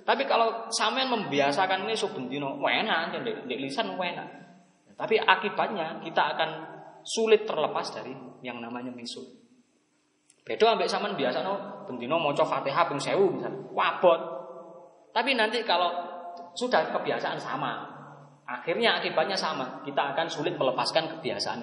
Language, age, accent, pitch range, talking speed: Indonesian, 20-39, native, 140-190 Hz, 130 wpm